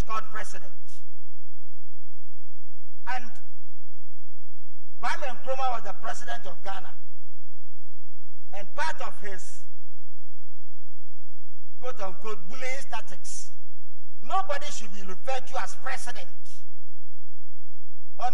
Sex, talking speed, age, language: male, 80 wpm, 50-69, English